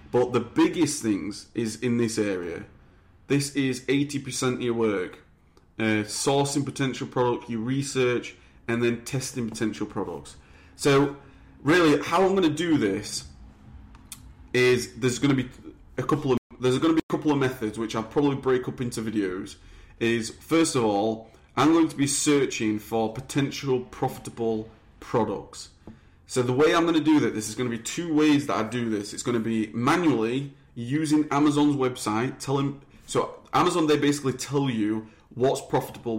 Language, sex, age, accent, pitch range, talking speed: English, male, 30-49, British, 110-140 Hz, 170 wpm